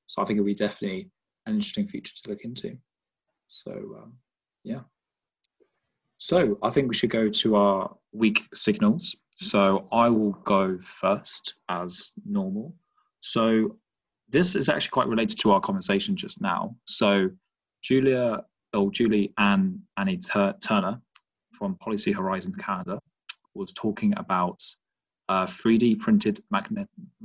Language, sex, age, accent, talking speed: English, male, 20-39, British, 135 wpm